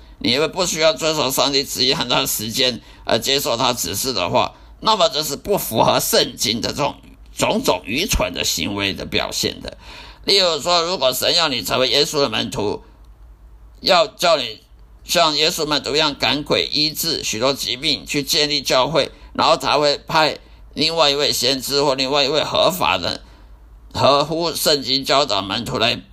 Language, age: English, 50-69